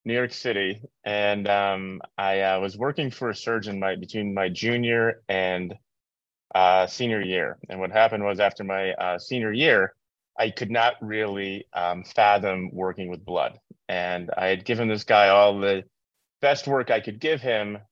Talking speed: 175 wpm